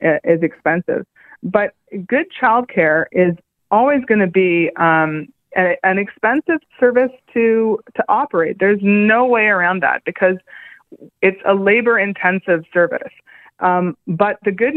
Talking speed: 135 wpm